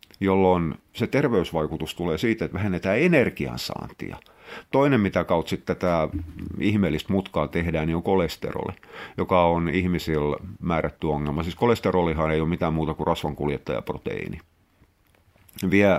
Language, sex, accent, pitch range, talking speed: Finnish, male, native, 80-100 Hz, 130 wpm